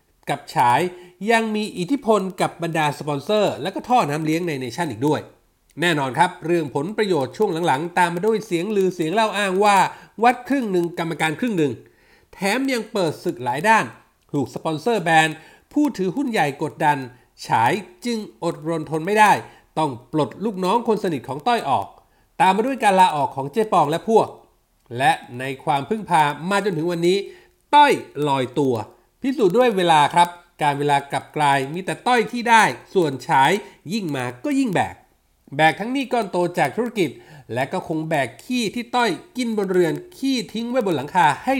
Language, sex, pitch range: Thai, male, 155-225 Hz